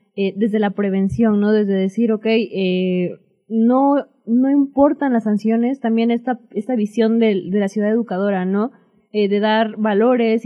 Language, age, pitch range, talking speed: Spanish, 20-39, 205-240 Hz, 160 wpm